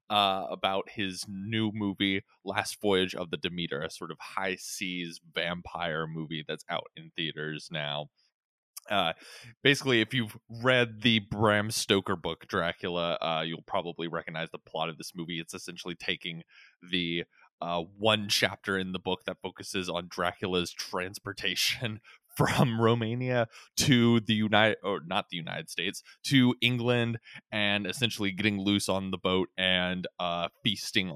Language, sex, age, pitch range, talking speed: English, male, 20-39, 90-120 Hz, 150 wpm